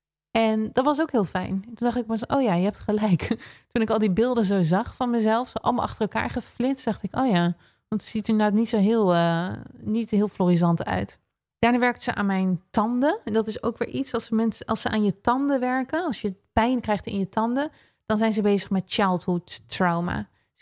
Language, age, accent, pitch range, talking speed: Dutch, 20-39, Dutch, 185-225 Hz, 230 wpm